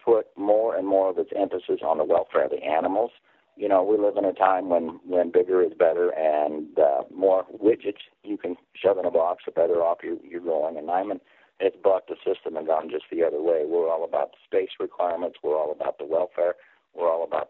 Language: English